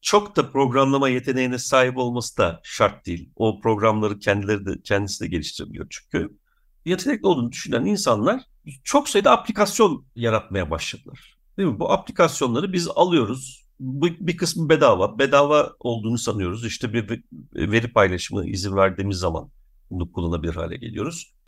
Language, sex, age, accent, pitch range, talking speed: Turkish, male, 60-79, native, 110-165 Hz, 135 wpm